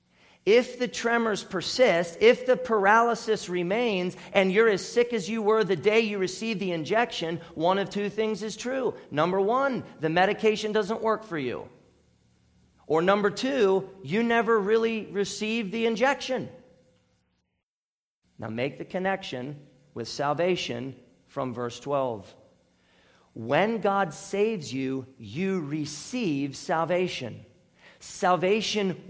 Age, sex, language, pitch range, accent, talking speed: 40-59, male, English, 160-220 Hz, American, 125 wpm